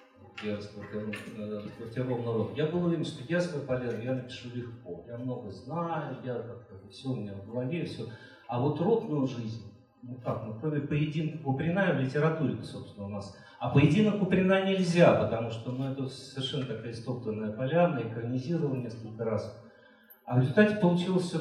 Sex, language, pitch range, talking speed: male, Russian, 115-150 Hz, 150 wpm